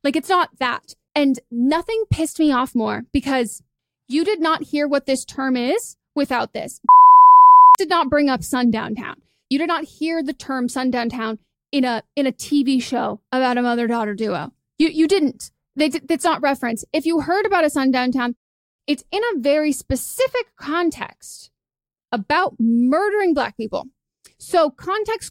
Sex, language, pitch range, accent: female, English, 250-320 Hz, American